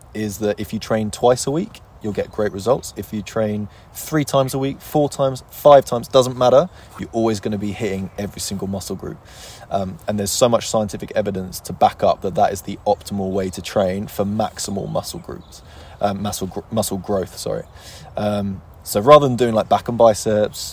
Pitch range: 100-110 Hz